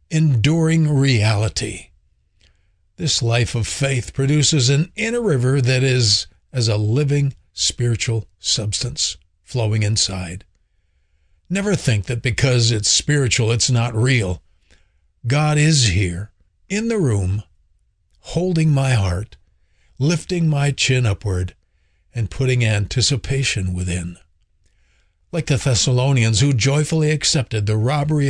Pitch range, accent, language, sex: 95-140 Hz, American, English, male